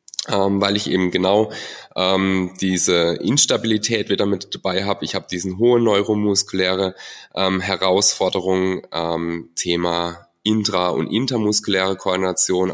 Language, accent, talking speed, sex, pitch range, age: German, German, 120 wpm, male, 90-105 Hz, 10-29